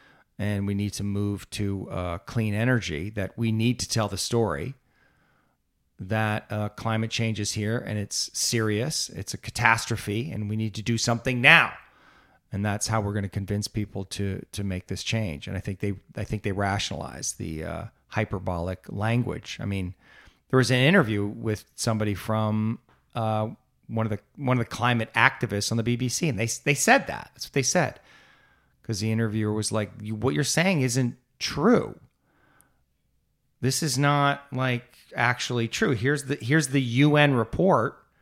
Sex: male